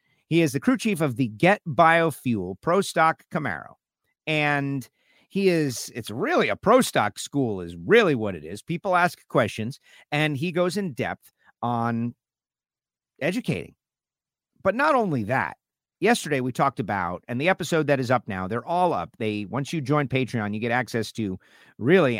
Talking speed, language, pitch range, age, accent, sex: 175 wpm, English, 115-165 Hz, 50-69, American, male